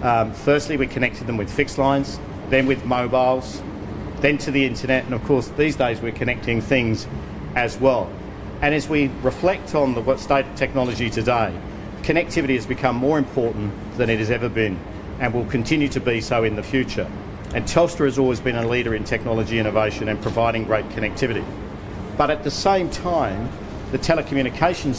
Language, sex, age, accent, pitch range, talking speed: English, male, 50-69, Australian, 105-135 Hz, 180 wpm